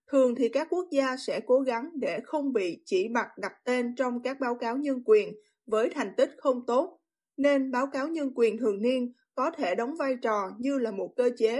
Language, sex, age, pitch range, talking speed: Vietnamese, female, 20-39, 230-290 Hz, 220 wpm